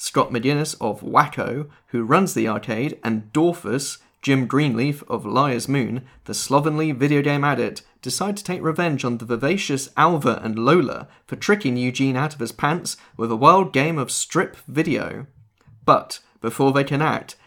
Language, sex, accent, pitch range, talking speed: English, male, British, 125-165 Hz, 170 wpm